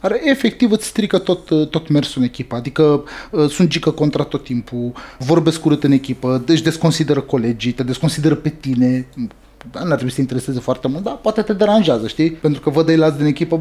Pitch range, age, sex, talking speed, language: 135-160 Hz, 20-39, male, 195 wpm, Romanian